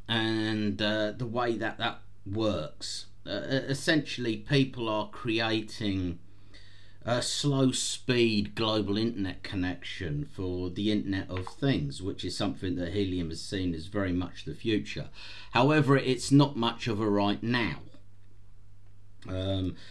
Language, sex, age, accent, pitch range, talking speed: English, male, 40-59, British, 100-120 Hz, 135 wpm